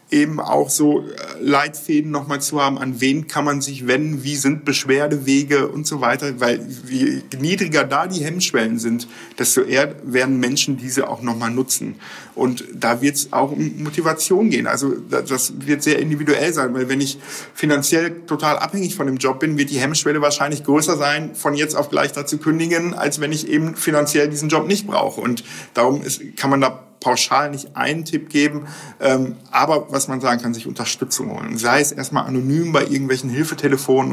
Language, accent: German, German